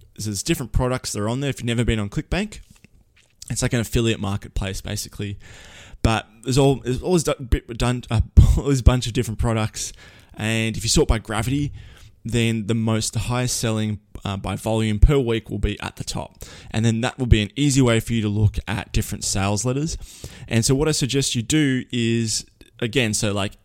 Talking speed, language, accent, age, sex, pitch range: 205 wpm, English, Australian, 20-39, male, 105-125 Hz